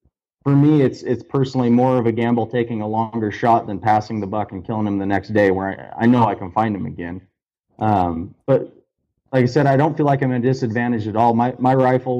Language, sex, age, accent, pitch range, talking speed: English, male, 30-49, American, 110-125 Hz, 245 wpm